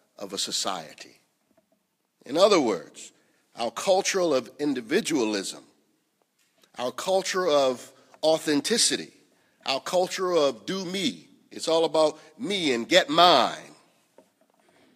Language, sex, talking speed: English, male, 105 wpm